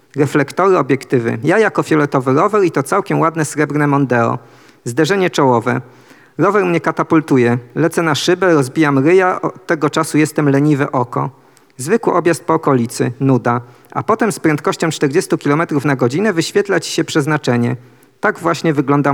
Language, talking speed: Polish, 150 wpm